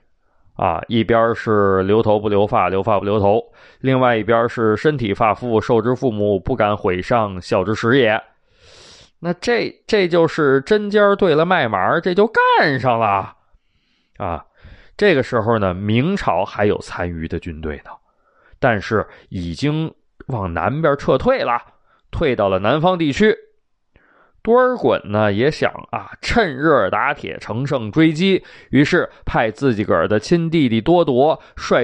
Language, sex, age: Chinese, male, 20-39